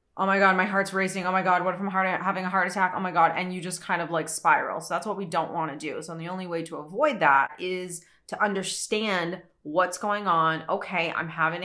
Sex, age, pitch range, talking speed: female, 30-49, 165-195 Hz, 255 wpm